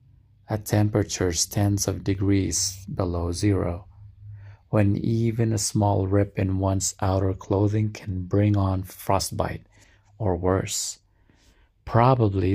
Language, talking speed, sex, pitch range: English, 110 wpm, male, 95-105 Hz